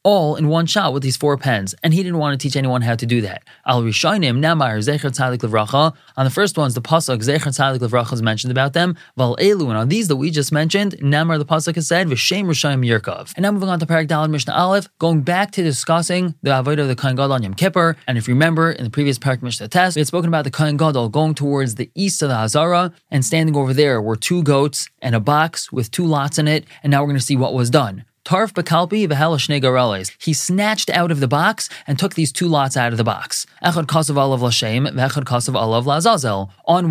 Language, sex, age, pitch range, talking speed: English, male, 20-39, 130-165 Hz, 220 wpm